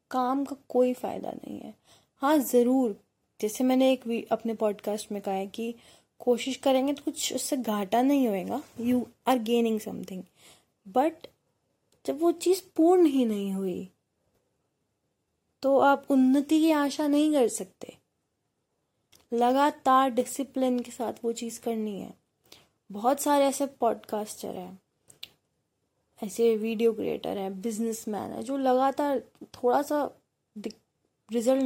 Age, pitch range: 20-39, 220-275 Hz